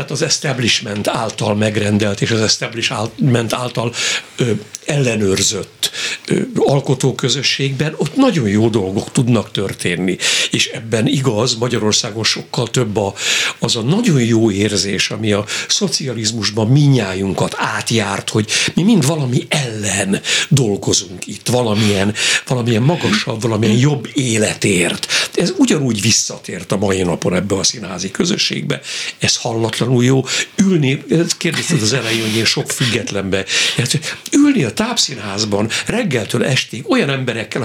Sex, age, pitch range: male, 60-79, 105-140 Hz